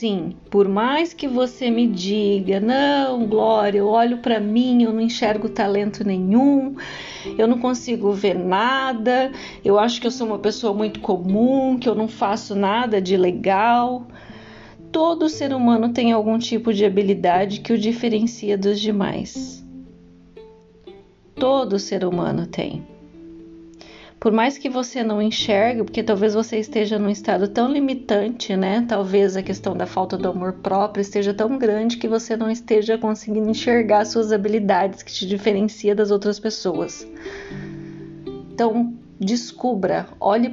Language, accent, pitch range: Portuguese, Brazilian, 195-230 Hz